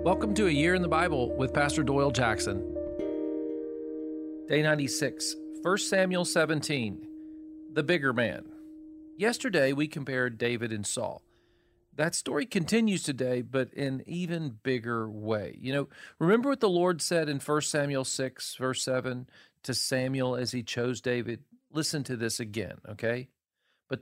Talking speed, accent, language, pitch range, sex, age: 150 wpm, American, English, 130-175 Hz, male, 40-59